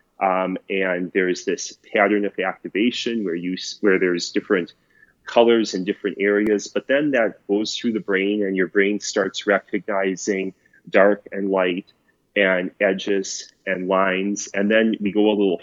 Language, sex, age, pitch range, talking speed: English, male, 30-49, 95-105 Hz, 155 wpm